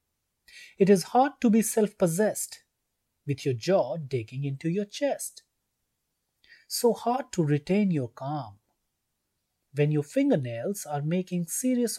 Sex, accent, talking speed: male, native, 130 wpm